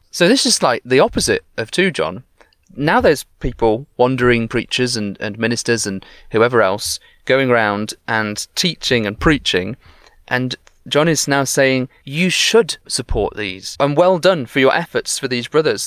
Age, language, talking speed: 30-49, English, 165 wpm